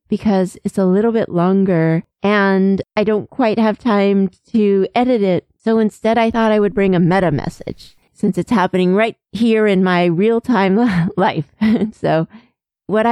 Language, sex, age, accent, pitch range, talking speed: English, female, 40-59, American, 190-235 Hz, 165 wpm